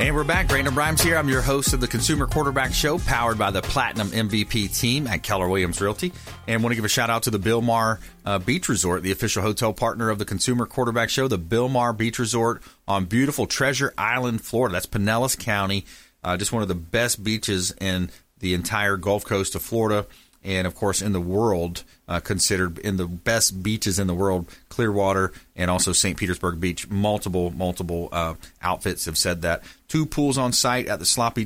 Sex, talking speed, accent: male, 205 wpm, American